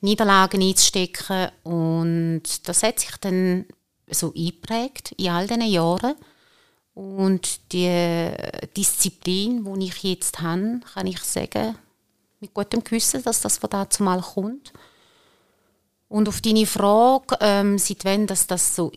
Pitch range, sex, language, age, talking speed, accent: 170-205 Hz, female, German, 30-49, 130 wpm, Austrian